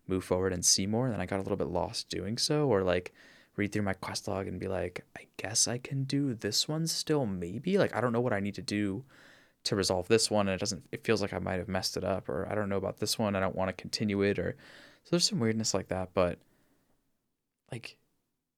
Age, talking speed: 20-39, 255 wpm